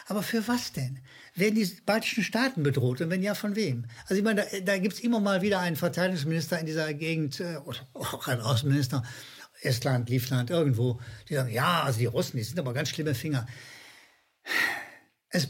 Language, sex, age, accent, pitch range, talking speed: German, male, 60-79, German, 125-185 Hz, 195 wpm